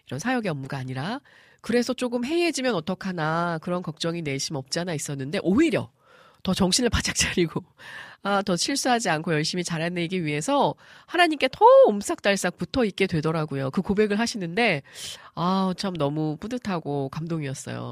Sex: female